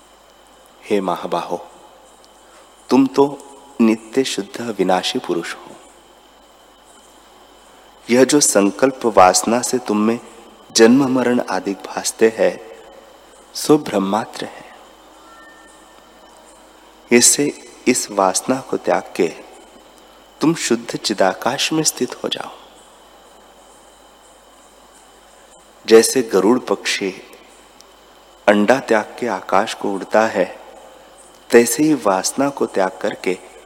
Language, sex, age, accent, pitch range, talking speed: Hindi, male, 30-49, native, 100-130 Hz, 95 wpm